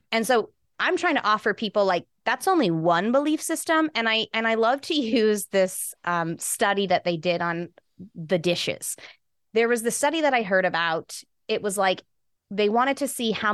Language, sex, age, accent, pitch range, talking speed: English, female, 20-39, American, 180-255 Hz, 200 wpm